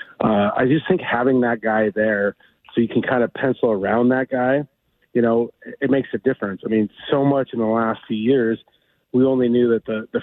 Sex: male